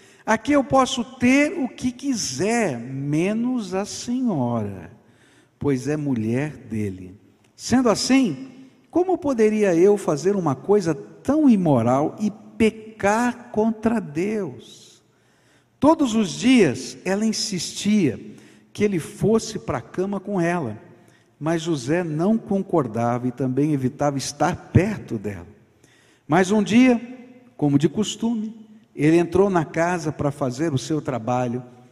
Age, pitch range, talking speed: 60-79, 125-210 Hz, 125 wpm